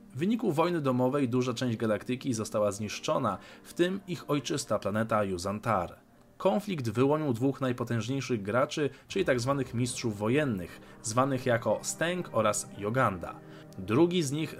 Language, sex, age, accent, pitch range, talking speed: Polish, male, 20-39, native, 110-145 Hz, 130 wpm